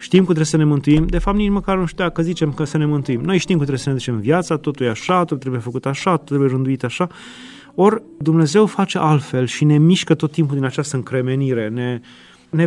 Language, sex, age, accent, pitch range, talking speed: Romanian, male, 30-49, native, 140-185 Hz, 240 wpm